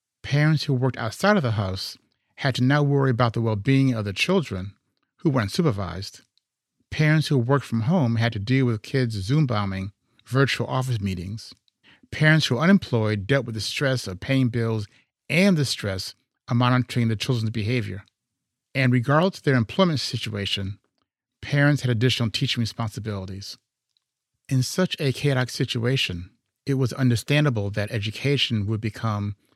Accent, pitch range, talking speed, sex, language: American, 110-135 Hz, 160 wpm, male, English